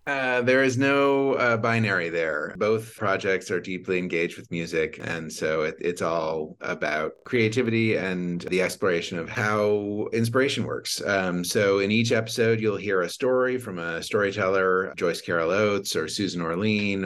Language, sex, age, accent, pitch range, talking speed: English, male, 30-49, American, 85-110 Hz, 160 wpm